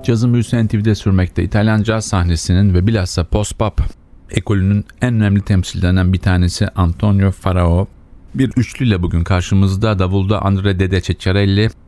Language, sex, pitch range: Turkish, male, 90-110 Hz